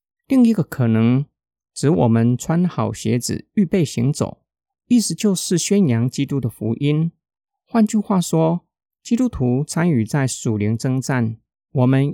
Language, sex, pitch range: Chinese, male, 120-165 Hz